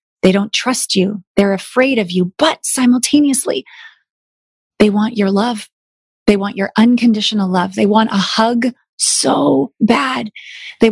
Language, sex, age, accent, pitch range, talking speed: English, female, 30-49, American, 200-250 Hz, 145 wpm